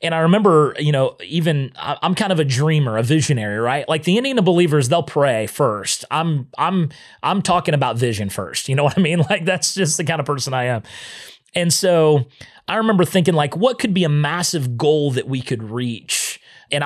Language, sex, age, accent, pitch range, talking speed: English, male, 30-49, American, 120-160 Hz, 210 wpm